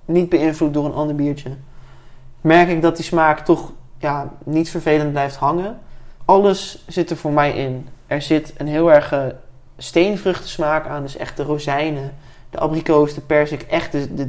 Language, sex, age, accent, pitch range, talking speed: Dutch, male, 20-39, Dutch, 140-165 Hz, 175 wpm